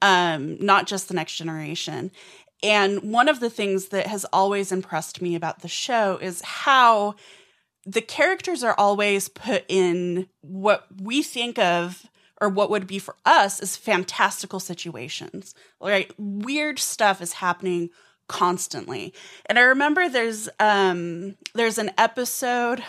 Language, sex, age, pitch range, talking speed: English, female, 20-39, 180-230 Hz, 140 wpm